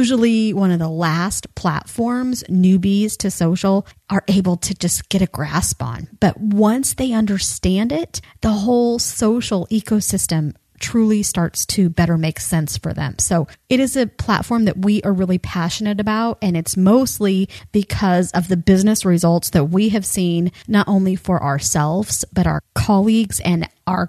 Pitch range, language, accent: 165-205 Hz, English, American